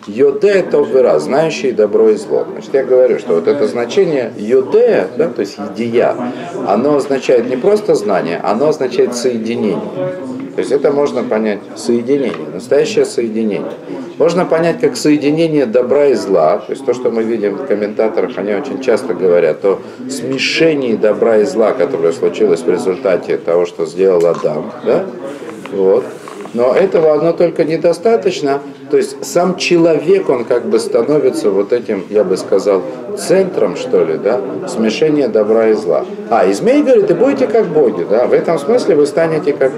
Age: 50-69